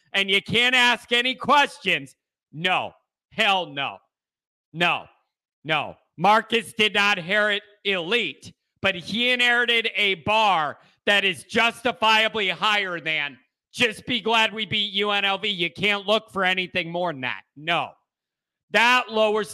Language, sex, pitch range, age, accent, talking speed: English, male, 185-235 Hz, 40-59, American, 130 wpm